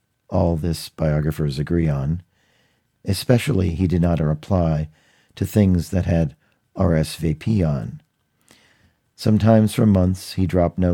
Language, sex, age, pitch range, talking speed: English, male, 50-69, 80-95 Hz, 120 wpm